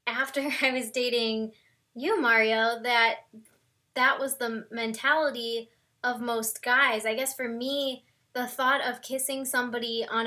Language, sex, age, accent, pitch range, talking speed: English, female, 20-39, American, 230-265 Hz, 140 wpm